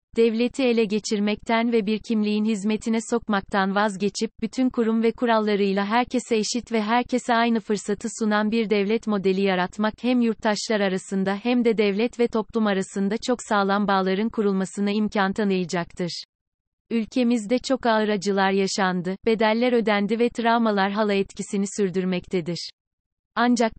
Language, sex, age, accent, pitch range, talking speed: Turkish, female, 30-49, native, 195-230 Hz, 130 wpm